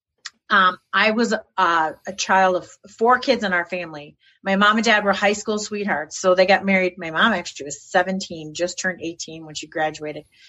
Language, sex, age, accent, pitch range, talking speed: English, female, 30-49, American, 185-240 Hz, 200 wpm